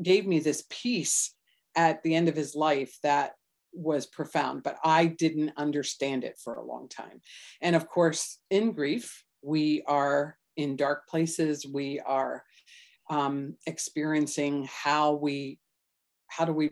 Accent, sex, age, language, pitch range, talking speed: American, female, 40-59, English, 145-165 Hz, 145 wpm